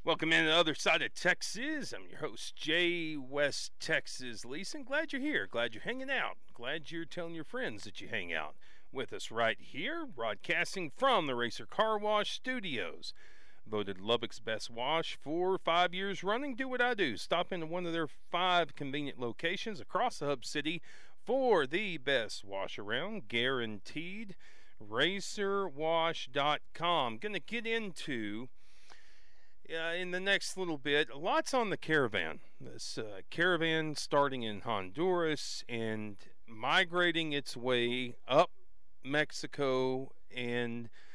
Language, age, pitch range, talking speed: English, 40-59, 130-180 Hz, 145 wpm